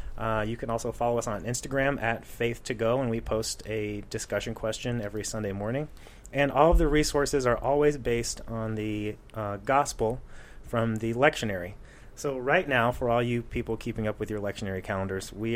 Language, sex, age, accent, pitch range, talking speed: English, male, 30-49, American, 110-130 Hz, 185 wpm